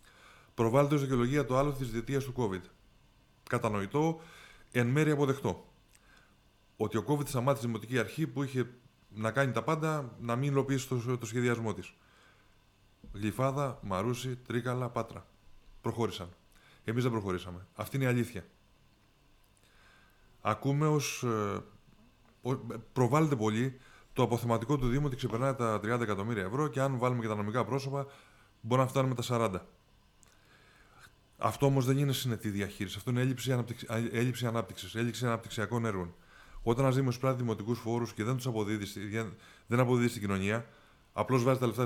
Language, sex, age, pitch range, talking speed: Greek, male, 20-39, 105-135 Hz, 145 wpm